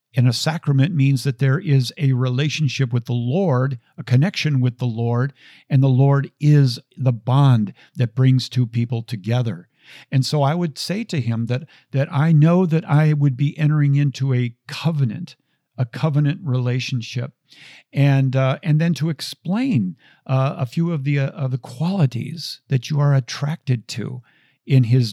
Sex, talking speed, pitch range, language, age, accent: male, 170 wpm, 125-155 Hz, English, 50-69, American